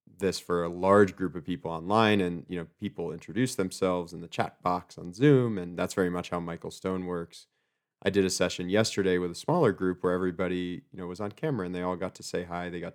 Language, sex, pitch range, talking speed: English, male, 85-95 Hz, 245 wpm